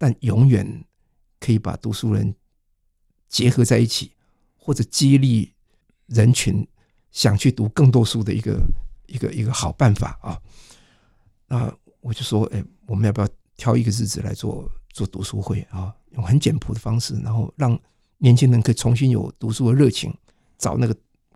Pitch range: 105-140 Hz